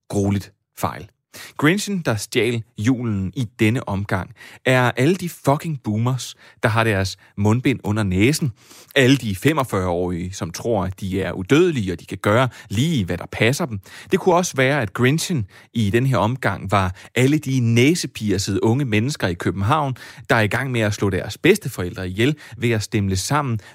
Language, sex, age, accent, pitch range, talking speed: Danish, male, 30-49, native, 105-140 Hz, 175 wpm